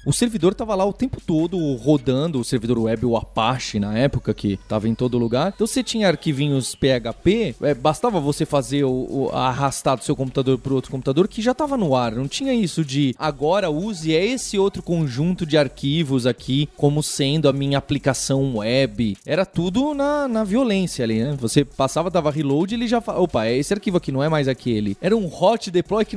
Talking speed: 195 wpm